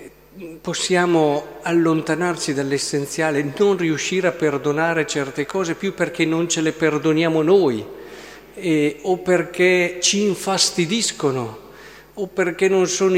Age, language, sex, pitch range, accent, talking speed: 50-69, Italian, male, 140-185 Hz, native, 115 wpm